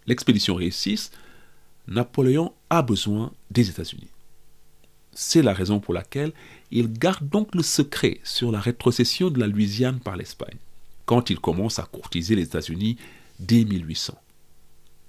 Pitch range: 90-140 Hz